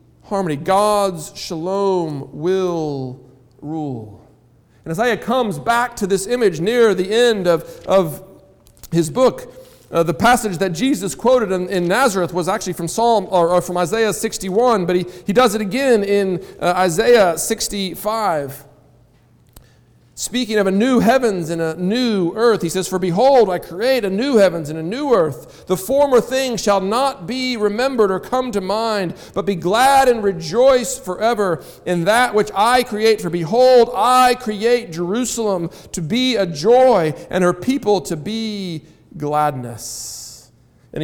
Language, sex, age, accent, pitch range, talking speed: English, male, 50-69, American, 160-220 Hz, 155 wpm